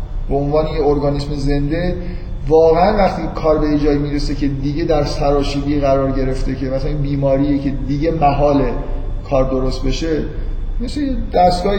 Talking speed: 150 wpm